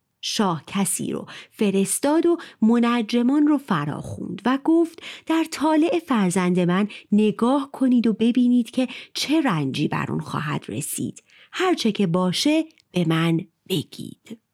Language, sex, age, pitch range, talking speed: Persian, female, 30-49, 190-270 Hz, 125 wpm